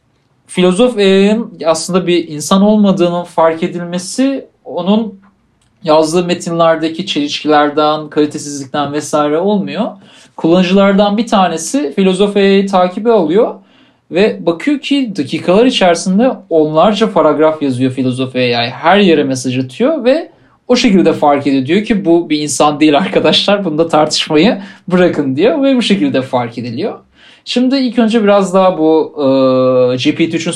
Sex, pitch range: male, 150-220 Hz